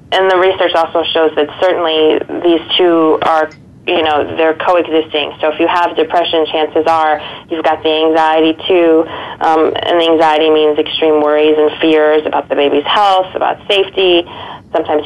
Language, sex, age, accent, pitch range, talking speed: English, female, 20-39, American, 155-170 Hz, 165 wpm